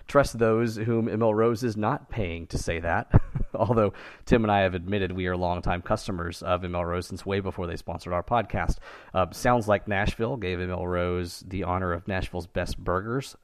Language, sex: English, male